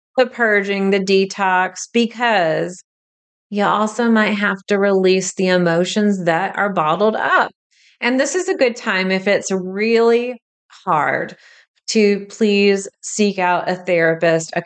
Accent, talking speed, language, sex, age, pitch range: American, 140 wpm, English, female, 30-49, 180-220 Hz